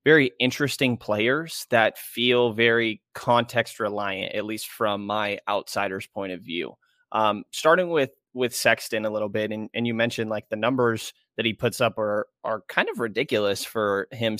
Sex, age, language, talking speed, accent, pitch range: male, 20-39, English, 175 wpm, American, 110-120 Hz